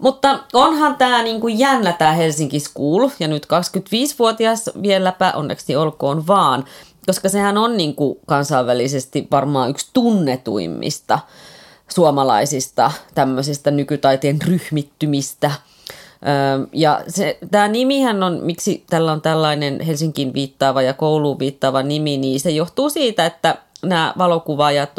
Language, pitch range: Finnish, 145-205 Hz